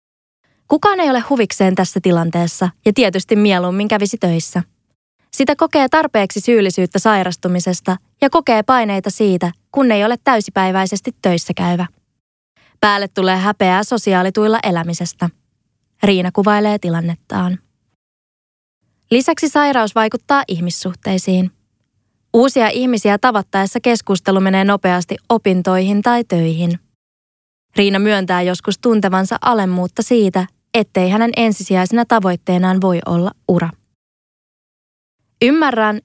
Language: Finnish